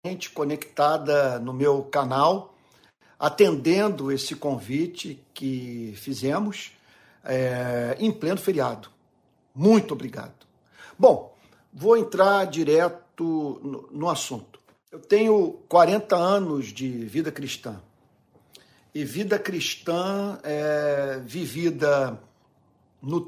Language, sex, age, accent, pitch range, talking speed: Portuguese, male, 50-69, Brazilian, 140-195 Hz, 90 wpm